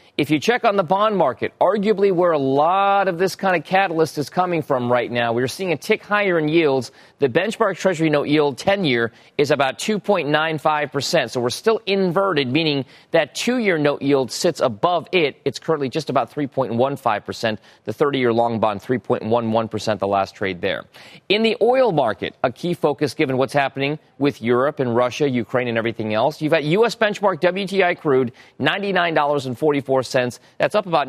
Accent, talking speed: American, 175 wpm